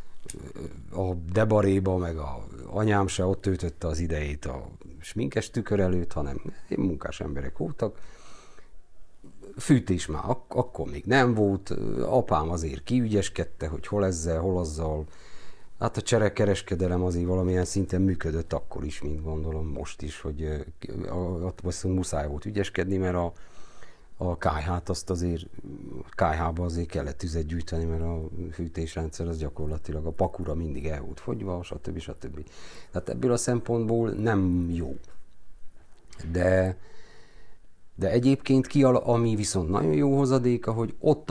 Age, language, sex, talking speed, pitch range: 50-69, Hungarian, male, 130 wpm, 80-100 Hz